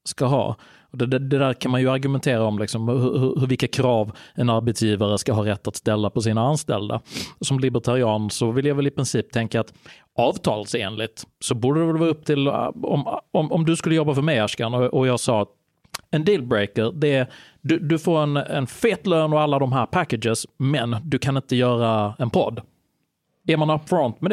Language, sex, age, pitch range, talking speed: Swedish, male, 30-49, 115-150 Hz, 200 wpm